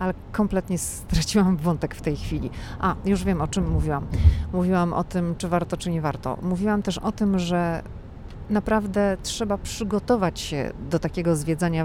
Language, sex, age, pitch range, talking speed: Polish, female, 40-59, 160-200 Hz, 165 wpm